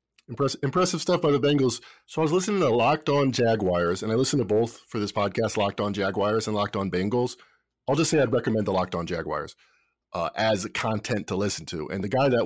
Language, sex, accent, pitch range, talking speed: English, male, American, 110-150 Hz, 230 wpm